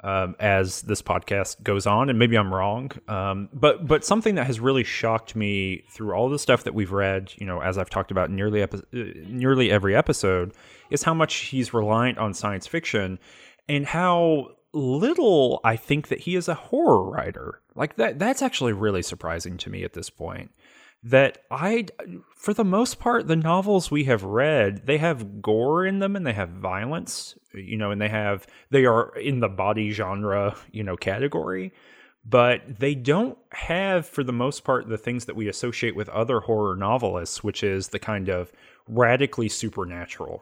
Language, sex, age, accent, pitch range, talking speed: English, male, 30-49, American, 100-135 Hz, 185 wpm